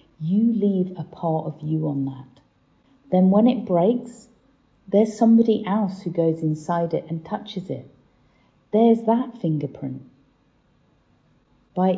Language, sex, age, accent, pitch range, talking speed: English, female, 40-59, British, 155-210 Hz, 130 wpm